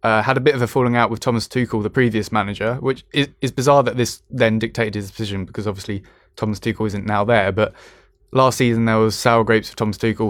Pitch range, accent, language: 105-120 Hz, British, English